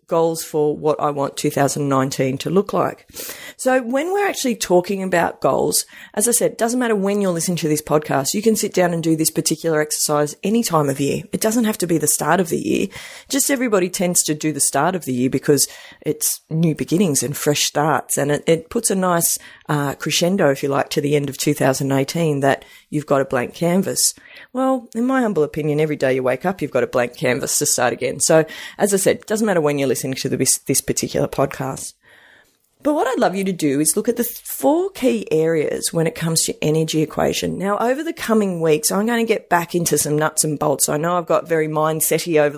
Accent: Australian